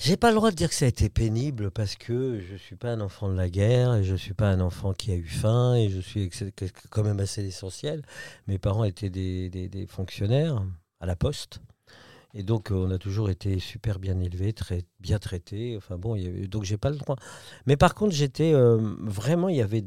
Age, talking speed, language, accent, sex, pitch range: 50-69, 240 wpm, French, French, male, 95-120 Hz